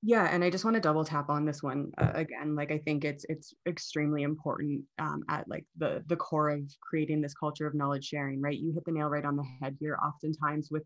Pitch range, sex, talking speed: 145-165 Hz, female, 250 wpm